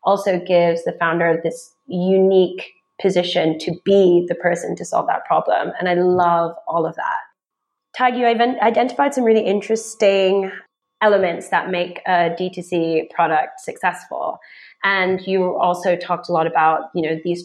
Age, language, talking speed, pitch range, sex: 20-39, English, 150 wpm, 175-205 Hz, female